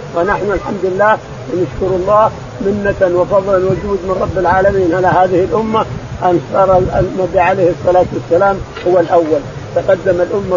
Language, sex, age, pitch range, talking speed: Arabic, male, 50-69, 170-205 Hz, 135 wpm